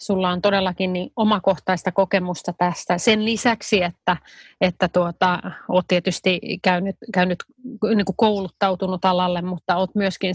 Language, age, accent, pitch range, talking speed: Finnish, 30-49, native, 180-210 Hz, 135 wpm